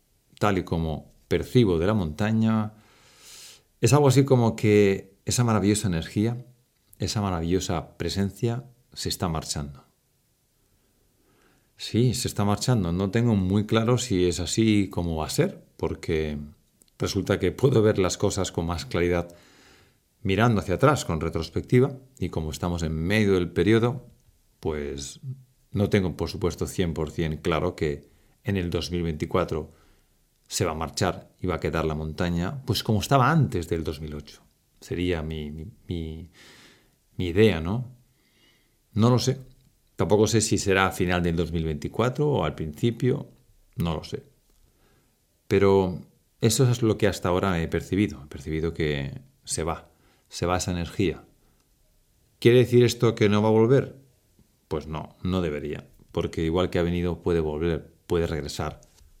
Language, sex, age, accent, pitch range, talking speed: Spanish, male, 40-59, Spanish, 85-110 Hz, 150 wpm